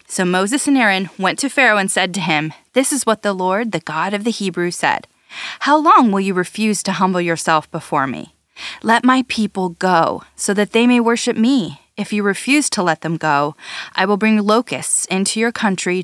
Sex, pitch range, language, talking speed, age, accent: female, 180-230 Hz, English, 210 wpm, 20-39, American